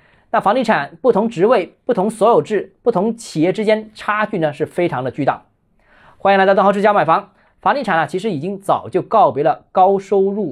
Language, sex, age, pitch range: Chinese, male, 20-39, 180-230 Hz